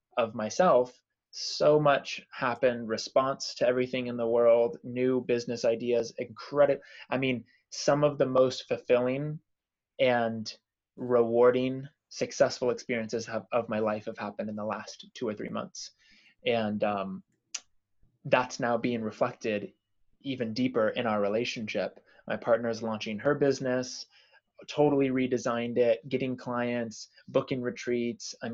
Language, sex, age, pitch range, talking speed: English, male, 20-39, 110-125 Hz, 130 wpm